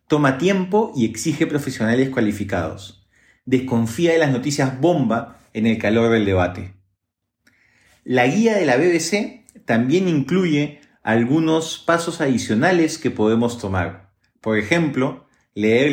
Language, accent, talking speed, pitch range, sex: Spanish, Argentinian, 120 wpm, 115-165 Hz, male